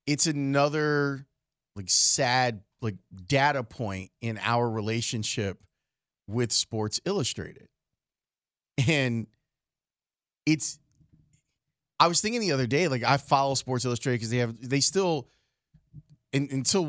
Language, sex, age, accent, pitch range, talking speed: English, male, 30-49, American, 120-155 Hz, 115 wpm